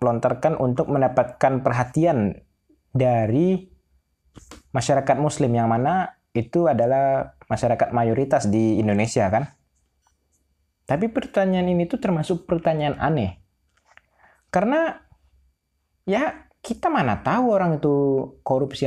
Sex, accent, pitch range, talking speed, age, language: male, native, 100-145 Hz, 100 wpm, 20-39, Indonesian